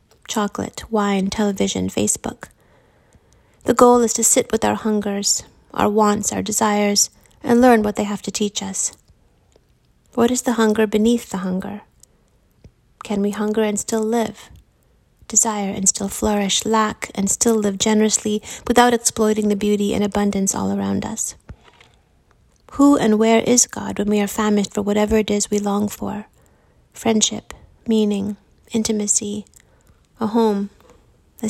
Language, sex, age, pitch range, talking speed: English, female, 30-49, 200-225 Hz, 145 wpm